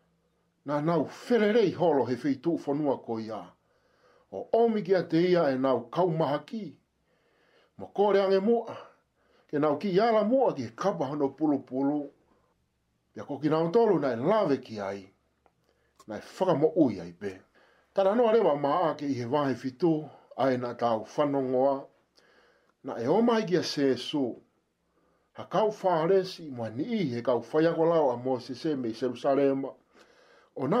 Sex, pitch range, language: male, 135-190 Hz, English